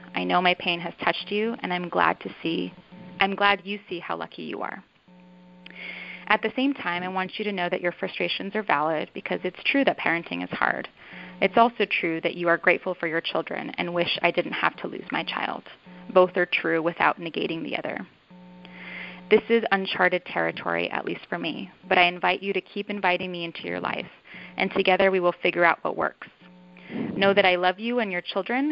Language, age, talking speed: English, 20-39, 210 wpm